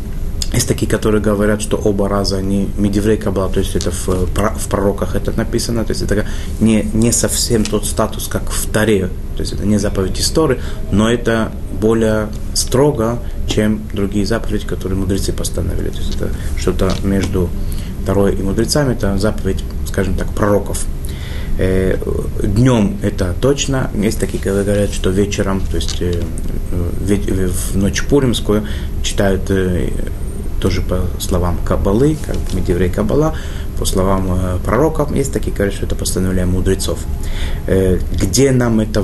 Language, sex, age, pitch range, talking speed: Russian, male, 30-49, 90-105 Hz, 145 wpm